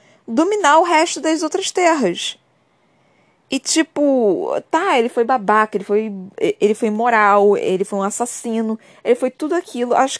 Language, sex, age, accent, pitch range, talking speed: Portuguese, female, 20-39, Brazilian, 175-250 Hz, 155 wpm